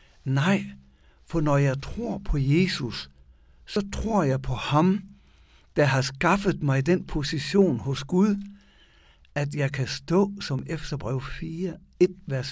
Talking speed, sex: 135 wpm, male